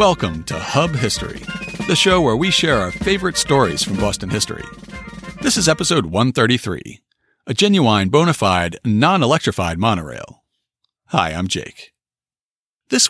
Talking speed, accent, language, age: 135 wpm, American, English, 40-59